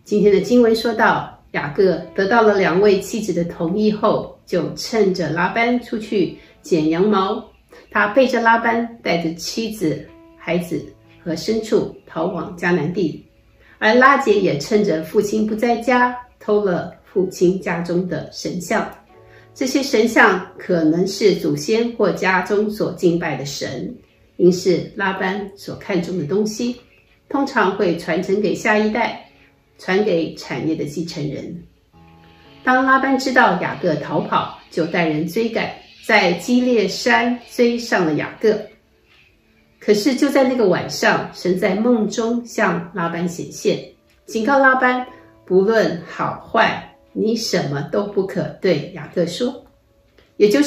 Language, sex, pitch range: Chinese, female, 170-230 Hz